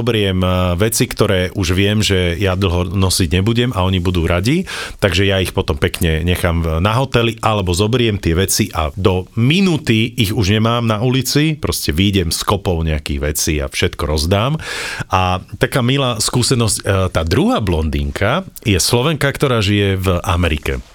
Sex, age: male, 40-59